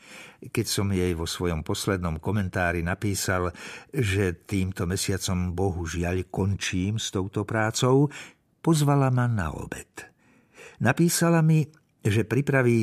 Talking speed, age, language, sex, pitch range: 110 wpm, 60-79, Slovak, male, 95-125 Hz